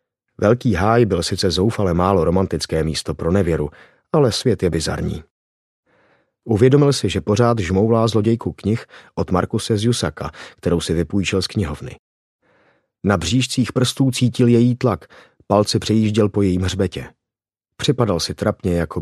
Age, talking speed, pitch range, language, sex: 30-49, 140 wpm, 85-115 Hz, Czech, male